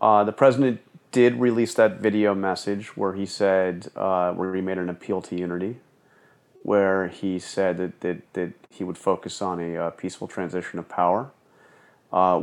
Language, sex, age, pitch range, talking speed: English, male, 30-49, 85-105 Hz, 175 wpm